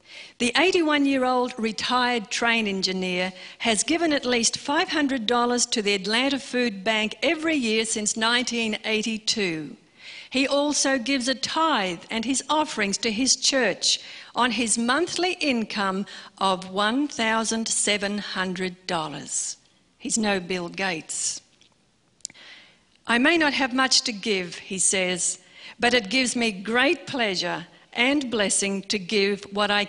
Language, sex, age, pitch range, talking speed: English, female, 50-69, 205-265 Hz, 120 wpm